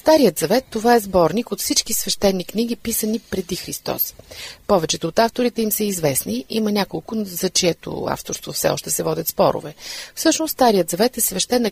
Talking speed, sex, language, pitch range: 170 wpm, female, Bulgarian, 170-215 Hz